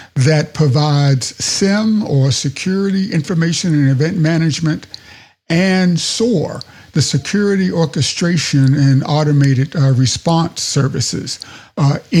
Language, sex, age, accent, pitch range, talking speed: English, male, 60-79, American, 135-165 Hz, 100 wpm